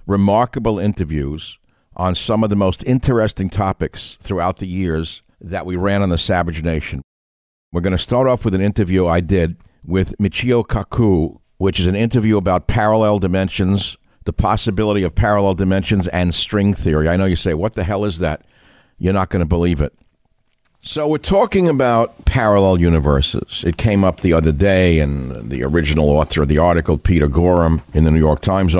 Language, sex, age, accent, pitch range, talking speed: English, male, 60-79, American, 80-105 Hz, 180 wpm